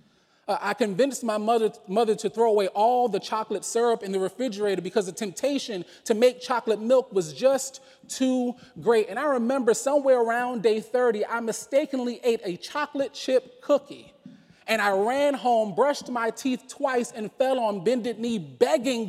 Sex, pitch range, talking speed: male, 205-260 Hz, 175 wpm